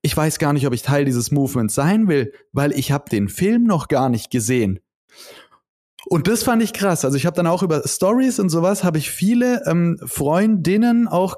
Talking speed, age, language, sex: 210 wpm, 30-49, German, male